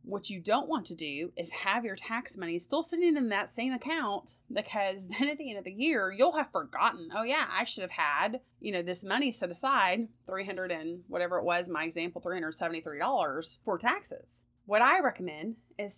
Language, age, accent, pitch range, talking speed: English, 30-49, American, 175-230 Hz, 205 wpm